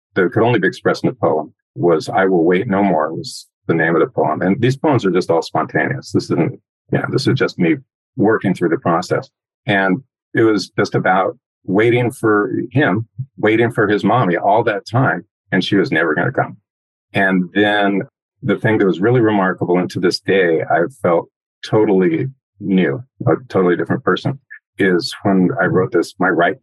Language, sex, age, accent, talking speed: English, male, 50-69, American, 200 wpm